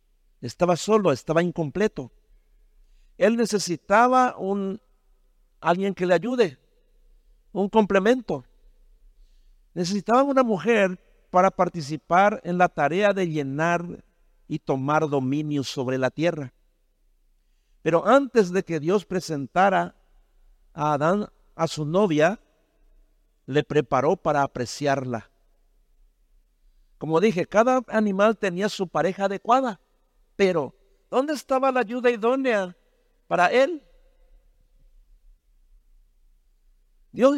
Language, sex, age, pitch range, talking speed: Spanish, male, 50-69, 135-195 Hz, 100 wpm